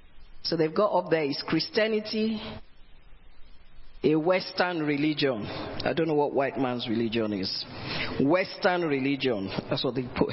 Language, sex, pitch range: English, female, 140-195 Hz